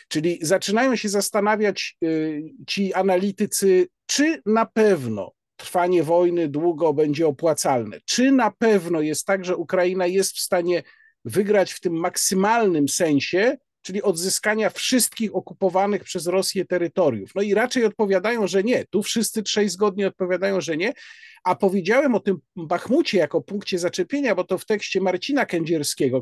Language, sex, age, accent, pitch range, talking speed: Polish, male, 50-69, native, 175-220 Hz, 145 wpm